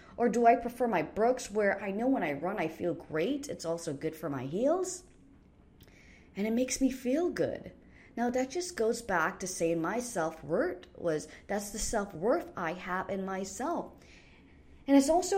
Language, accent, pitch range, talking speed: English, American, 190-280 Hz, 185 wpm